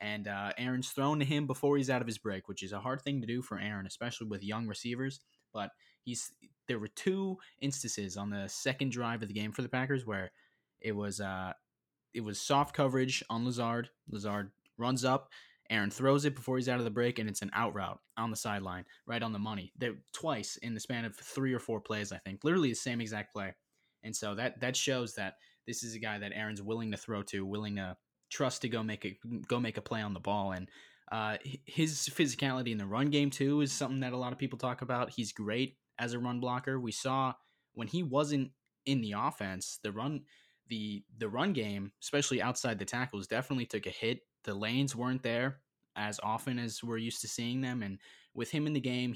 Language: English